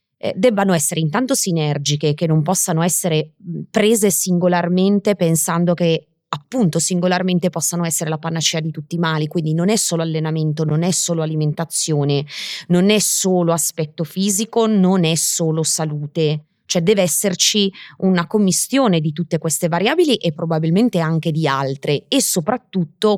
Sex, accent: female, native